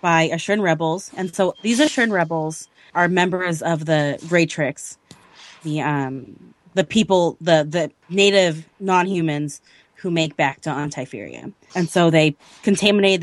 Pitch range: 155-185 Hz